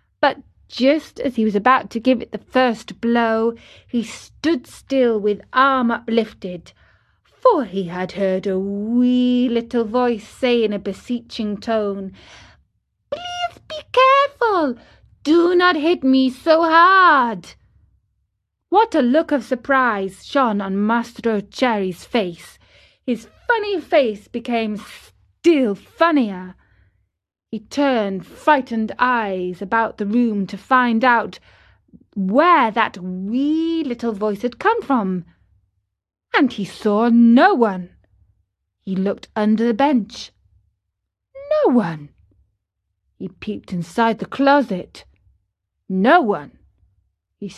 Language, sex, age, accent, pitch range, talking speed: English, female, 30-49, British, 190-260 Hz, 120 wpm